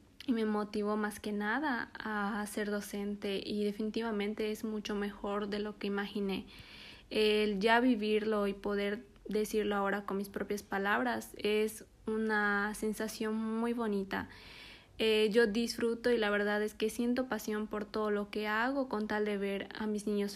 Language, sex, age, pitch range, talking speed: Spanish, female, 20-39, 205-225 Hz, 165 wpm